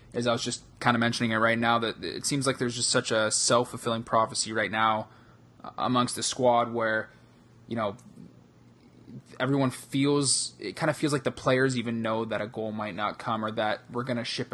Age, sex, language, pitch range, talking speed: 20-39, male, English, 110-125 Hz, 205 wpm